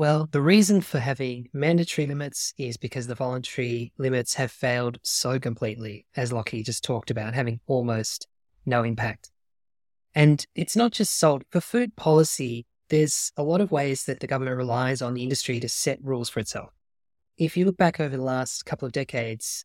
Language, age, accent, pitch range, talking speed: English, 20-39, Australian, 125-155 Hz, 185 wpm